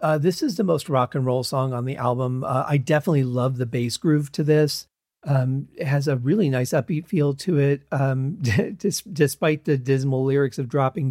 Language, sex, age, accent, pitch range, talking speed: English, male, 40-59, American, 135-155 Hz, 205 wpm